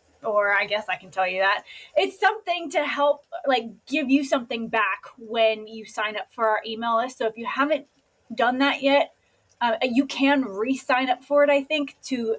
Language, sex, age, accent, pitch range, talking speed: English, female, 20-39, American, 225-275 Hz, 205 wpm